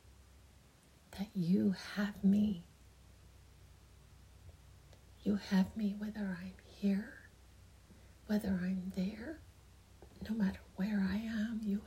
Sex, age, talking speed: female, 30-49, 90 wpm